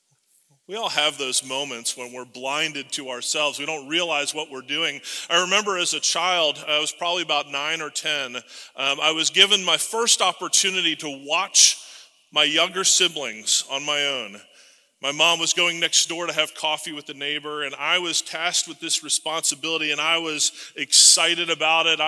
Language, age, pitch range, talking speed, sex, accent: English, 30-49, 155-205 Hz, 180 wpm, male, American